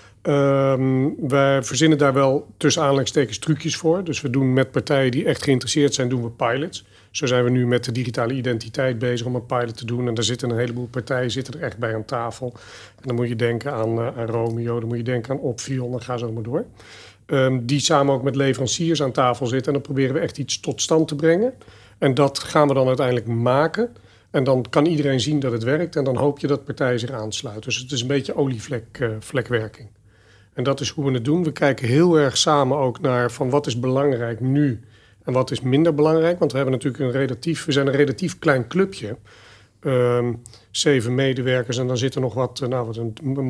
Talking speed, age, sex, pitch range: 230 wpm, 40-59, male, 120-145 Hz